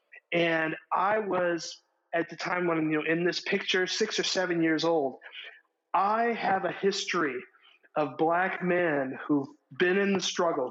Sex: male